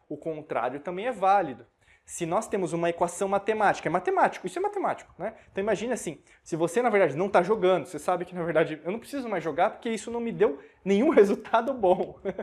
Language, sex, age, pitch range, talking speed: Portuguese, male, 20-39, 170-210 Hz, 215 wpm